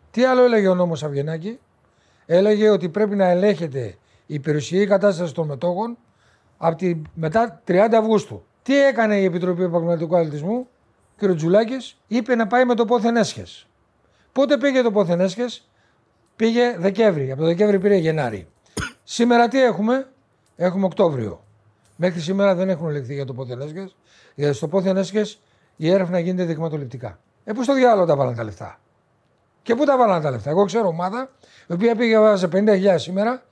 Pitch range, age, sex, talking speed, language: 155-220 Hz, 60-79, male, 150 wpm, Greek